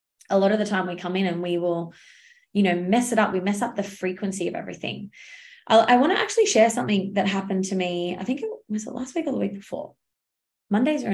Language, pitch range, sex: English, 185-245 Hz, female